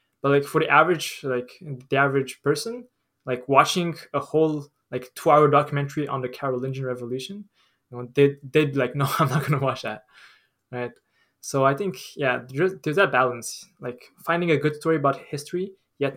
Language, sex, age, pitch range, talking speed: English, male, 20-39, 125-155 Hz, 185 wpm